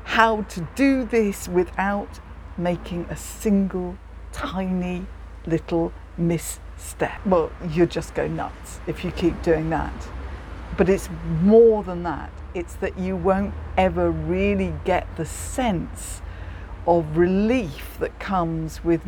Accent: British